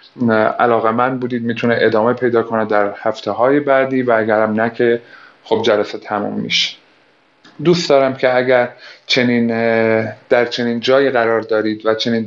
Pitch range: 110-130 Hz